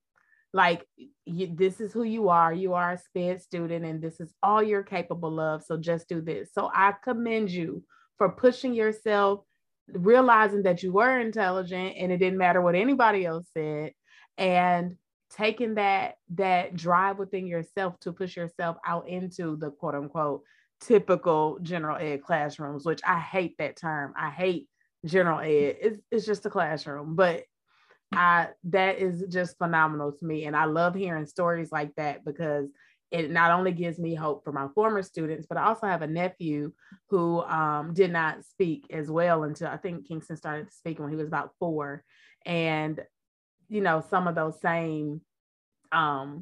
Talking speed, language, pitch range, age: 175 wpm, English, 155-190 Hz, 20-39